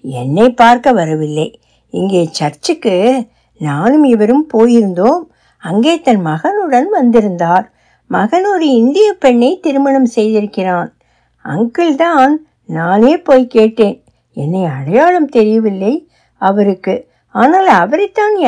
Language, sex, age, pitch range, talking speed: Tamil, female, 60-79, 200-280 Hz, 90 wpm